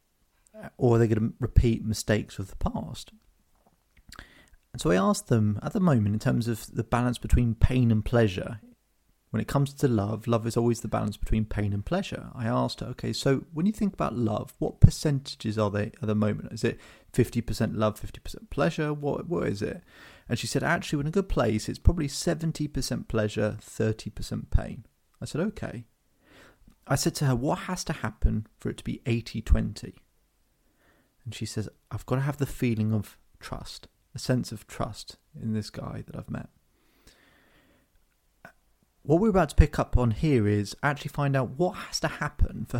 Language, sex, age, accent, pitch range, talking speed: English, male, 30-49, British, 110-140 Hz, 190 wpm